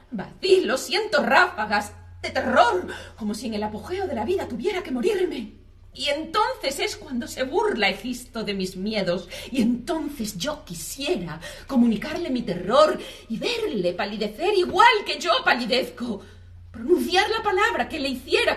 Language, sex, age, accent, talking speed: Spanish, female, 40-59, Spanish, 150 wpm